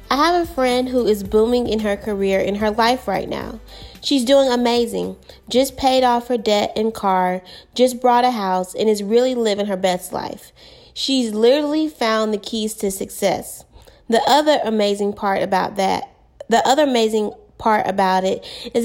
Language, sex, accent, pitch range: English, female, American, 205-255 Hz